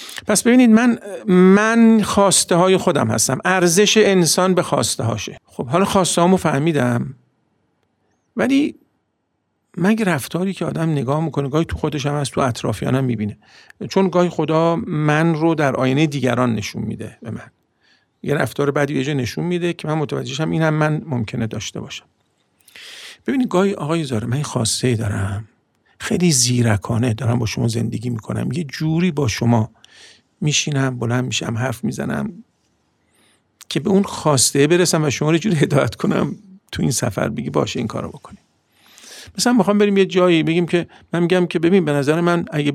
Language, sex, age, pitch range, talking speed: Persian, male, 50-69, 125-175 Hz, 165 wpm